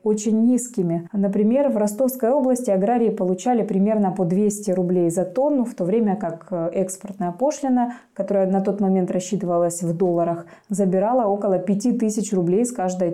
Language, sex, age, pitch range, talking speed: Russian, female, 20-39, 185-235 Hz, 150 wpm